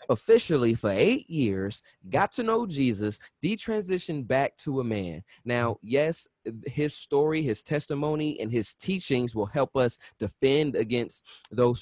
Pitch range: 120-195 Hz